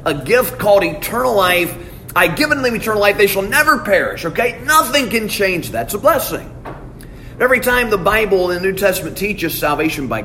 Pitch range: 140-205 Hz